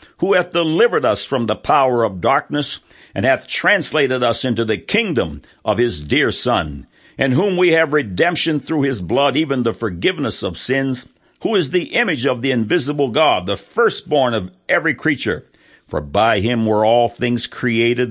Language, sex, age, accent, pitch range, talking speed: English, male, 60-79, American, 100-135 Hz, 175 wpm